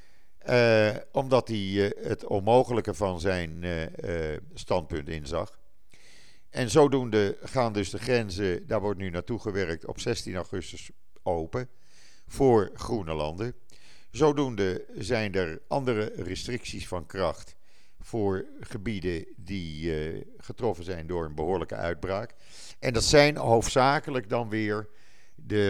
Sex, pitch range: male, 90-115 Hz